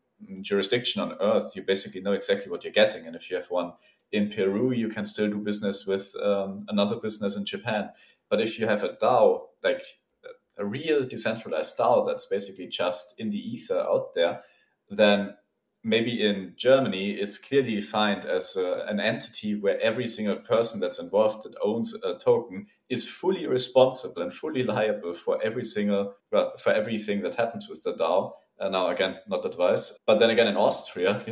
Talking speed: 185 wpm